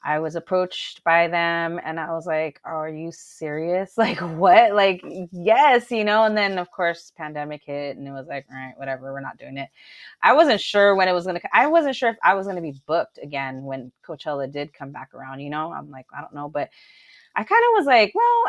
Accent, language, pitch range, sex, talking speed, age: American, English, 150-225 Hz, female, 235 wpm, 20-39